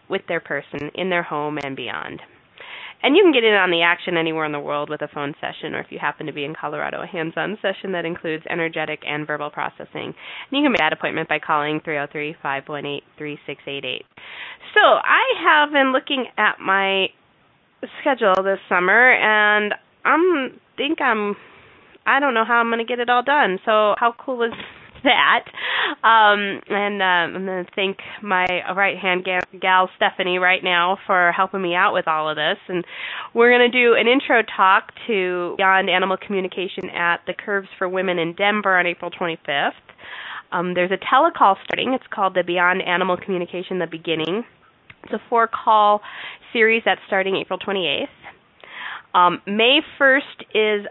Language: English